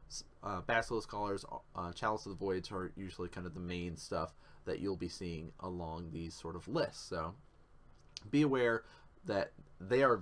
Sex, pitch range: male, 90-130 Hz